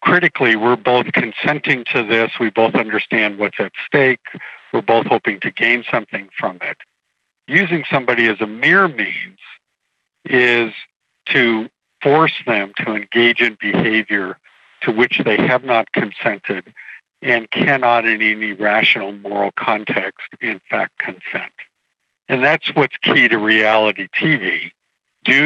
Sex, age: male, 60-79